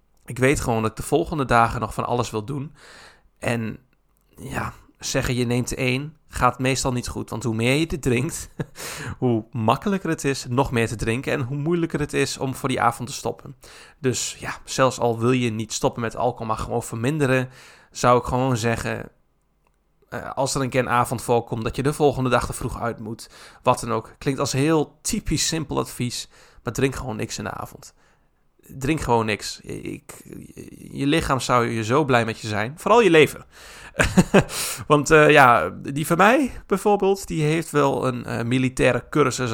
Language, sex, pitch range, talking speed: Dutch, male, 115-140 Hz, 195 wpm